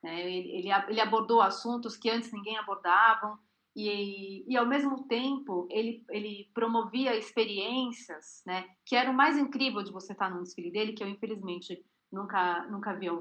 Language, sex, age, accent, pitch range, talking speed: Portuguese, female, 30-49, Brazilian, 185-240 Hz, 175 wpm